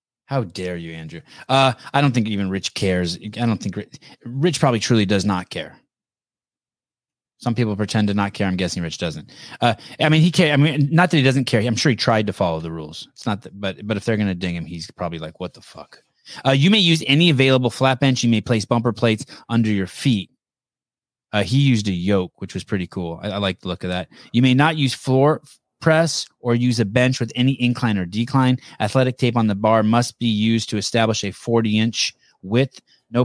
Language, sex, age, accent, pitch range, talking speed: English, male, 30-49, American, 105-130 Hz, 235 wpm